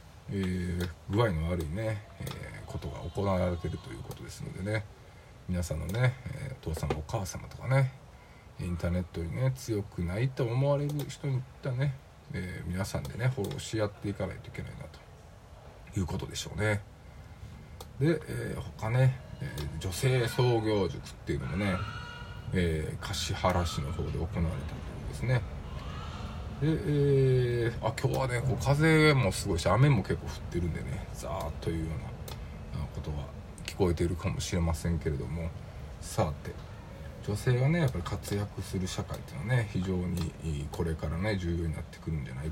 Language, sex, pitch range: Japanese, male, 85-125 Hz